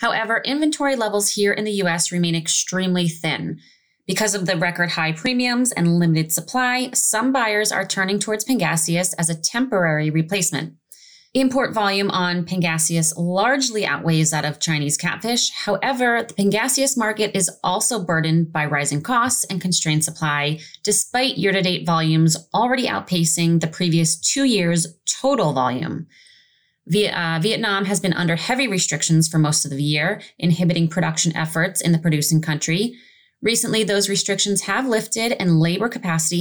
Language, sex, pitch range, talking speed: English, female, 165-215 Hz, 145 wpm